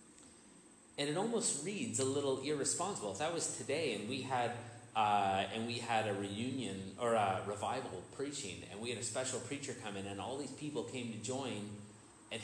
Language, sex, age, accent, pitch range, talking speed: English, male, 30-49, American, 105-130 Hz, 195 wpm